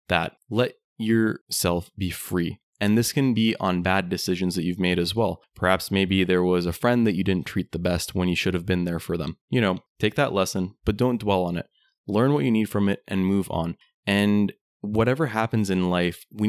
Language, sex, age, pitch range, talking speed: English, male, 20-39, 90-110 Hz, 225 wpm